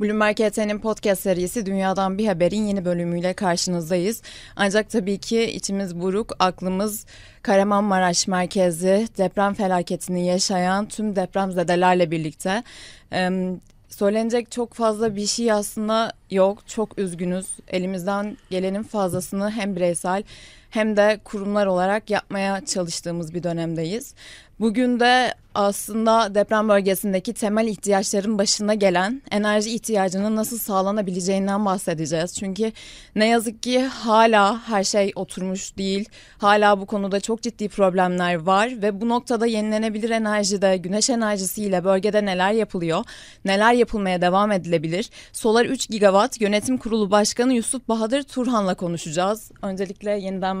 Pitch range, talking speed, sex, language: 190-220 Hz, 125 wpm, female, Turkish